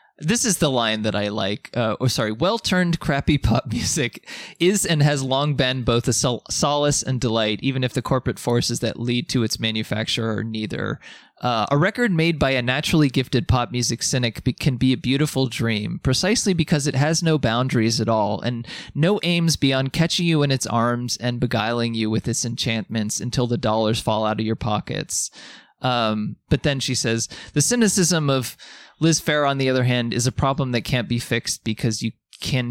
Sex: male